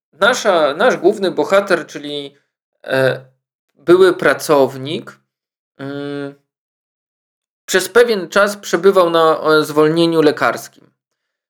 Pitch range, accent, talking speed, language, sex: 145-185 Hz, native, 70 wpm, Polish, male